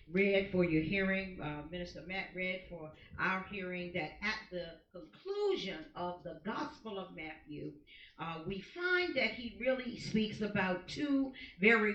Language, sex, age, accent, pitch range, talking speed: English, female, 50-69, American, 185-260 Hz, 150 wpm